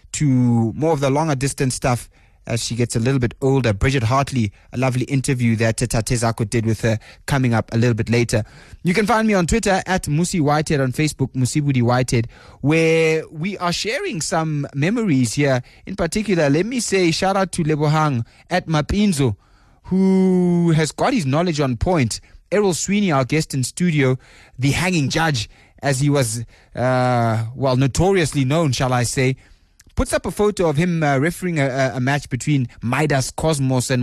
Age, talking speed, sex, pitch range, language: 20-39, 180 wpm, male, 125-170 Hz, English